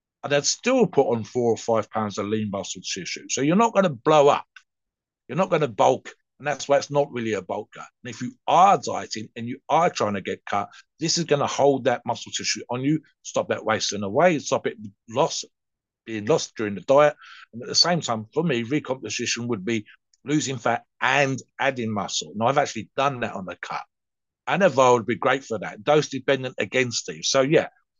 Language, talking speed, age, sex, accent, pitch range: English, 220 wpm, 50-69, male, British, 115-150 Hz